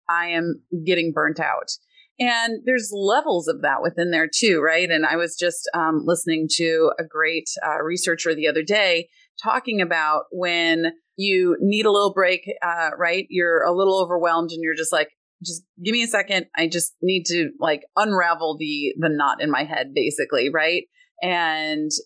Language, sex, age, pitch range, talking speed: English, female, 30-49, 160-200 Hz, 180 wpm